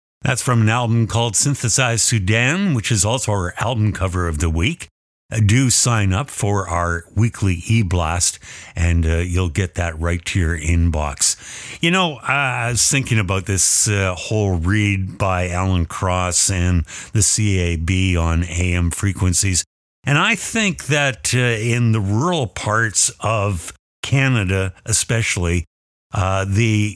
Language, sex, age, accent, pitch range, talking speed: English, male, 60-79, American, 90-115 Hz, 145 wpm